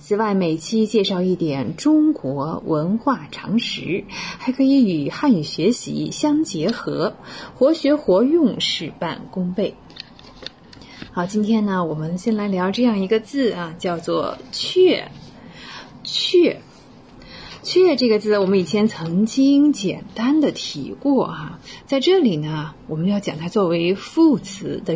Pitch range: 175-245 Hz